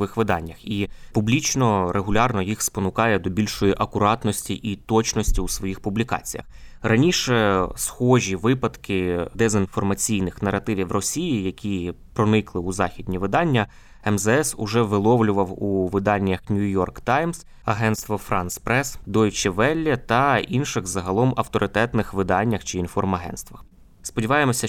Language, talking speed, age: Ukrainian, 110 wpm, 20-39